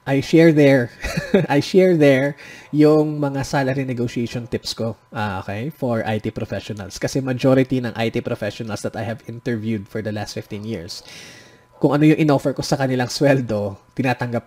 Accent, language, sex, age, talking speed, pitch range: native, Filipino, male, 20-39, 165 wpm, 110-150 Hz